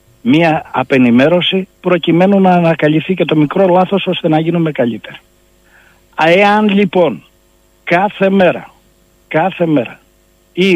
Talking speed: 110 wpm